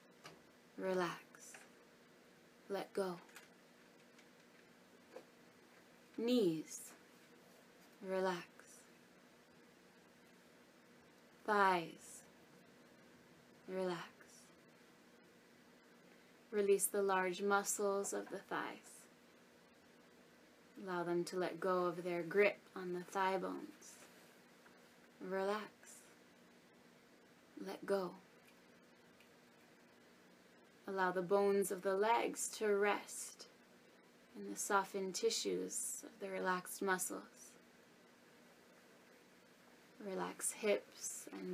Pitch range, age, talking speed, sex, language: 170-200 Hz, 20-39, 70 wpm, female, English